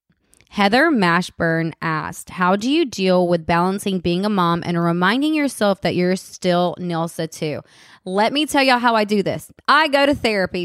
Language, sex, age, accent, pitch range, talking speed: English, female, 20-39, American, 185-235 Hz, 180 wpm